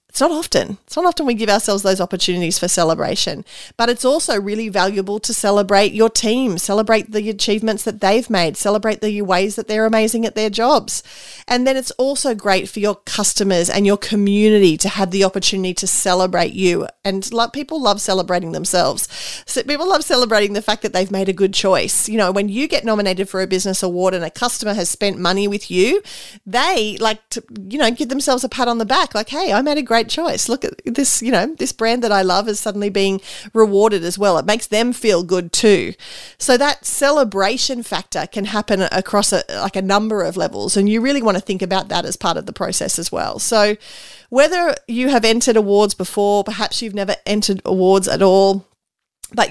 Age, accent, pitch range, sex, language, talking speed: 40-59, Australian, 190-230 Hz, female, English, 210 wpm